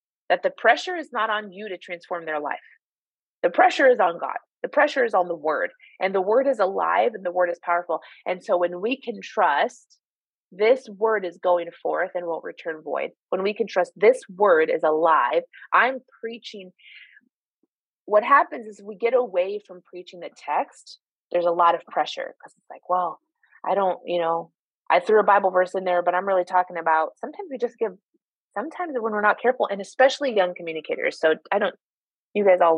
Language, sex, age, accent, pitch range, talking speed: English, female, 30-49, American, 180-255 Hz, 205 wpm